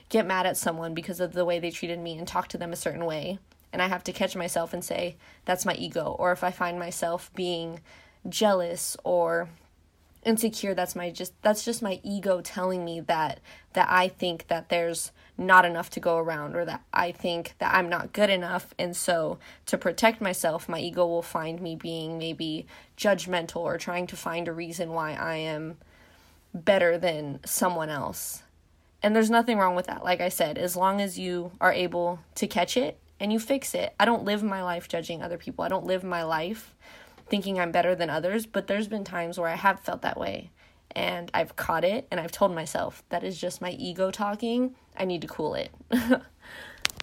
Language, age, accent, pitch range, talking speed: English, 20-39, American, 170-195 Hz, 205 wpm